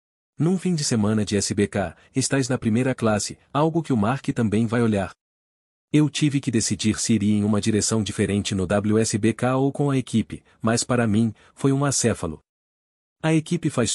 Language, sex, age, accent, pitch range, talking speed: Portuguese, male, 40-59, Brazilian, 105-130 Hz, 180 wpm